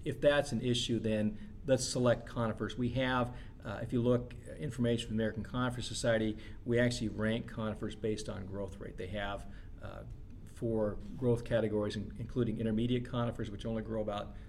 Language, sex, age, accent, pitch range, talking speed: English, male, 40-59, American, 105-115 Hz, 175 wpm